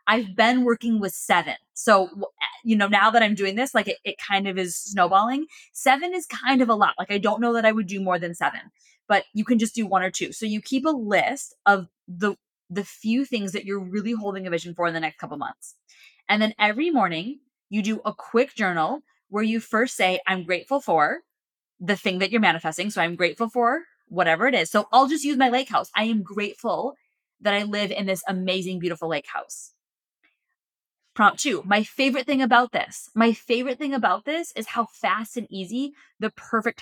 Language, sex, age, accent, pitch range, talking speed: English, female, 20-39, American, 190-240 Hz, 215 wpm